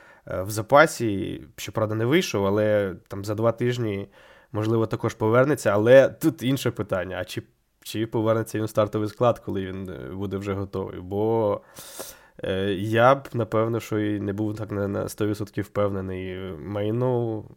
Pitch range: 100-120 Hz